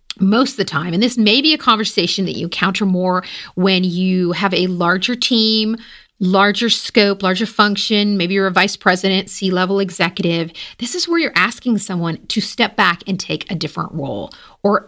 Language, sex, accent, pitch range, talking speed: English, female, American, 180-230 Hz, 185 wpm